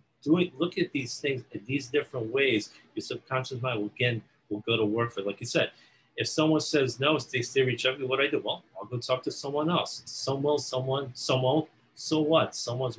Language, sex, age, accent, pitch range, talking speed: English, male, 50-69, American, 120-165 Hz, 220 wpm